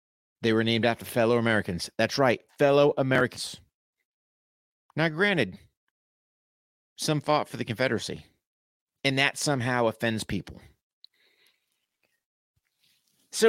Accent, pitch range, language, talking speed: American, 115-155 Hz, English, 100 wpm